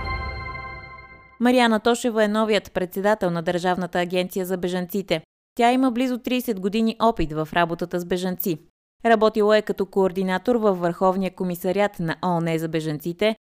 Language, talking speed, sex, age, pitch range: Bulgarian, 140 wpm, female, 20-39, 170-225 Hz